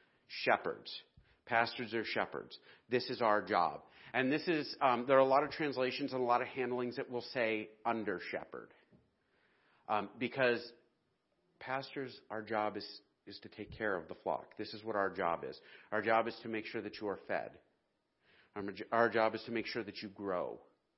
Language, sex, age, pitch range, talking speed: English, male, 40-59, 105-125 Hz, 190 wpm